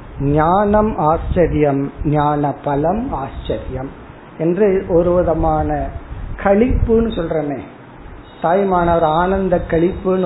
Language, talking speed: Tamil, 70 wpm